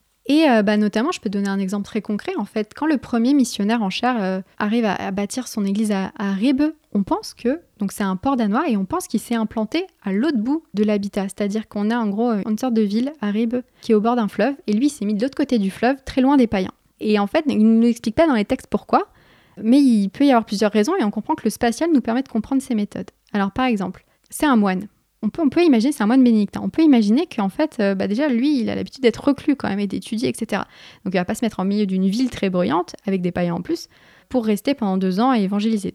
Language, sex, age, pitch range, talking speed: French, female, 20-39, 205-255 Hz, 280 wpm